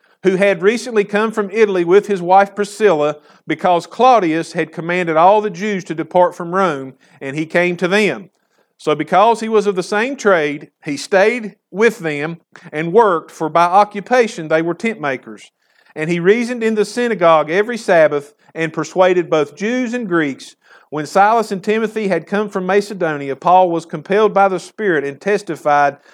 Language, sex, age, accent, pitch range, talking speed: English, male, 50-69, American, 155-205 Hz, 175 wpm